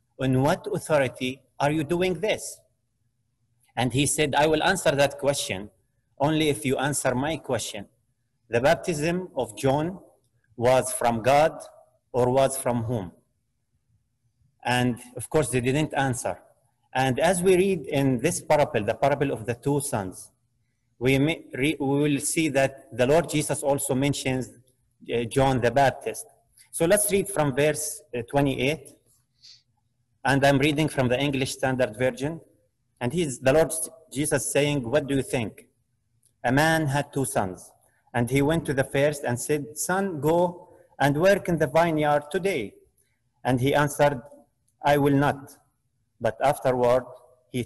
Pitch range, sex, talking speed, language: 120-150 Hz, male, 155 wpm, English